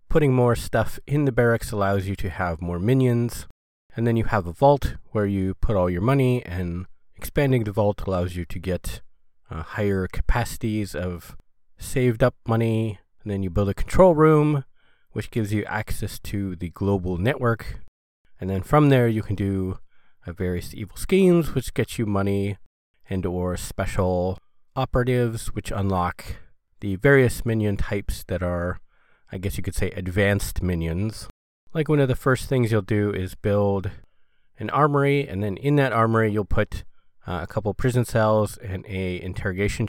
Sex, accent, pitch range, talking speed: male, American, 95-125 Hz, 175 wpm